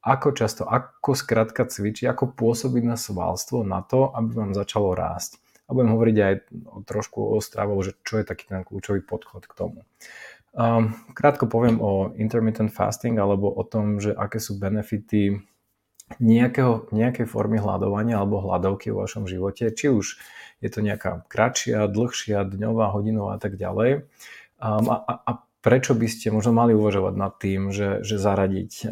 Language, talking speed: Slovak, 165 wpm